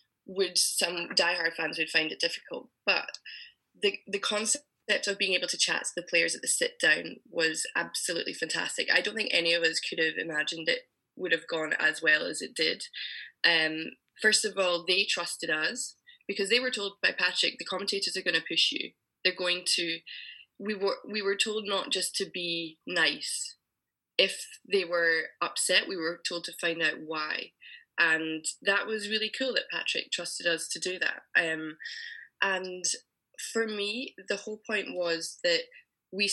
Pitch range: 170-240 Hz